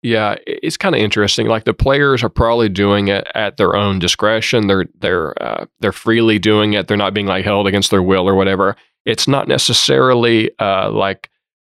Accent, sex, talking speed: American, male, 195 wpm